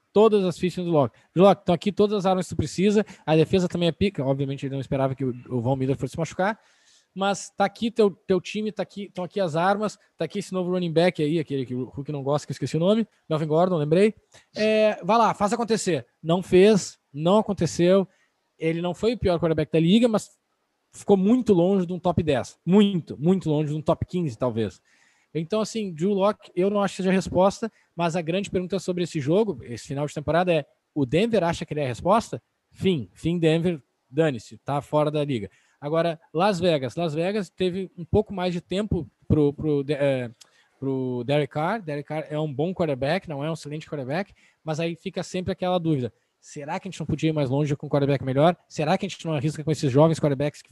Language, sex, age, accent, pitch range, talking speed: Portuguese, male, 20-39, Brazilian, 145-190 Hz, 225 wpm